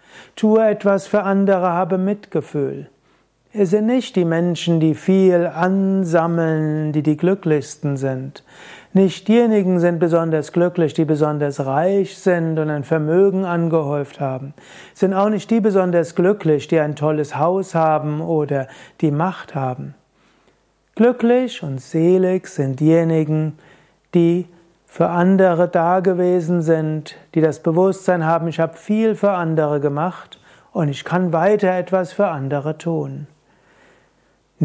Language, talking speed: German, 135 wpm